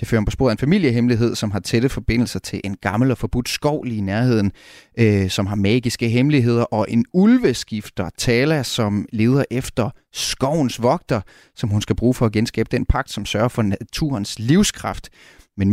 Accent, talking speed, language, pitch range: native, 185 wpm, Danish, 110-135 Hz